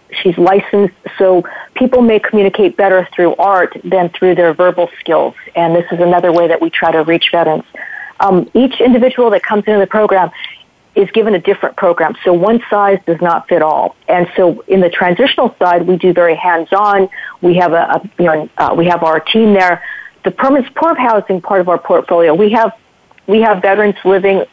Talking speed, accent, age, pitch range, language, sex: 200 wpm, American, 50-69, 175-205 Hz, English, female